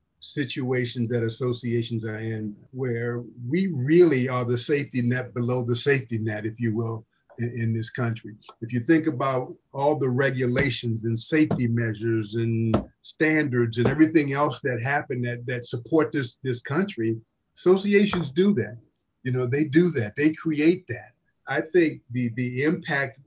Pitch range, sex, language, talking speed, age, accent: 115-135 Hz, male, English, 160 wpm, 50-69, American